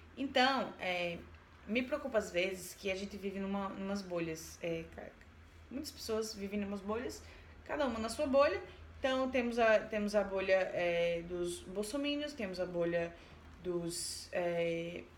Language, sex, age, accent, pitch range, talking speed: Portuguese, female, 20-39, Brazilian, 195-285 Hz, 160 wpm